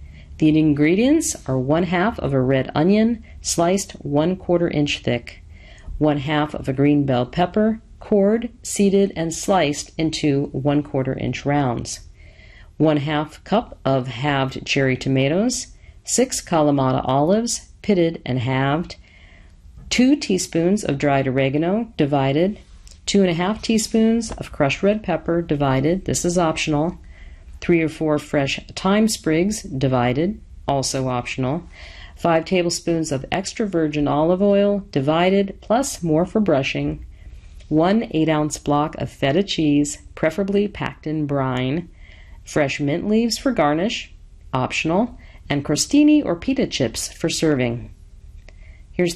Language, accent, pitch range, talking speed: English, American, 130-180 Hz, 130 wpm